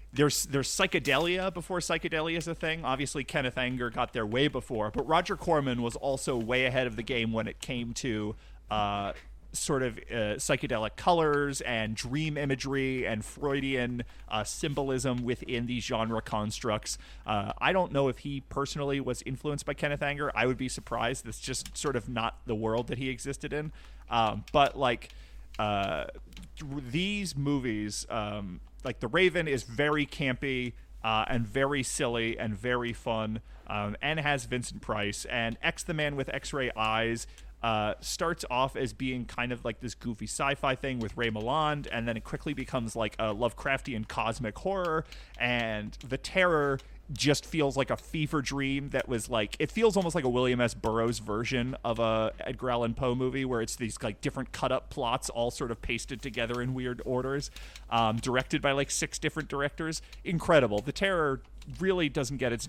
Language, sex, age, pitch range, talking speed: English, male, 30-49, 115-145 Hz, 180 wpm